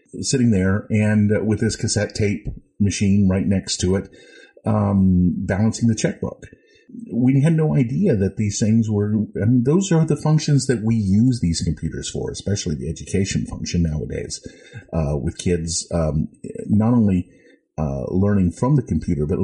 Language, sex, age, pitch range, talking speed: English, male, 50-69, 90-120 Hz, 160 wpm